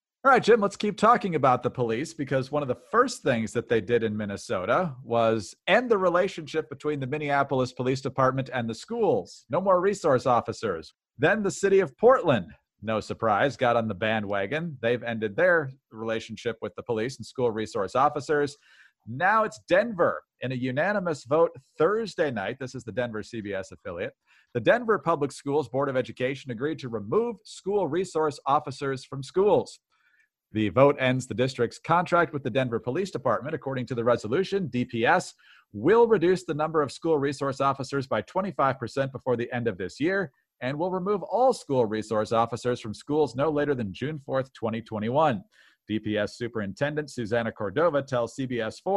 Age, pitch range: 40-59, 120-160 Hz